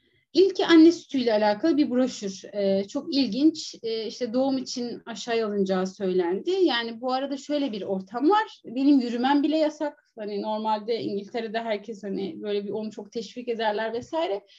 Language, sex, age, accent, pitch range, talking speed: Turkish, female, 30-49, native, 205-295 Hz, 160 wpm